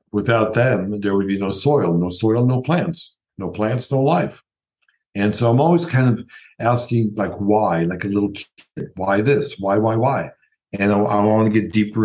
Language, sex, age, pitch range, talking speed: English, male, 60-79, 105-130 Hz, 190 wpm